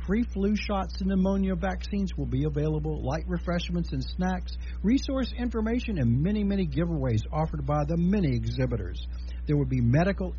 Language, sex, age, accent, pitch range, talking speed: English, male, 60-79, American, 115-195 Hz, 160 wpm